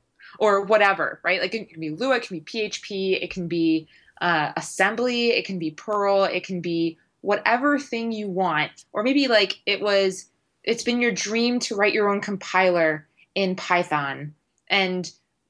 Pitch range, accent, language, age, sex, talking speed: 170-215 Hz, American, English, 20-39, female, 175 wpm